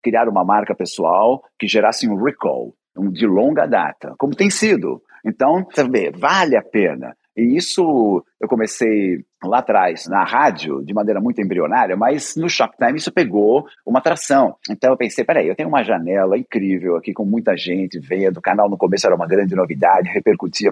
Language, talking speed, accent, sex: Portuguese, 175 wpm, Brazilian, male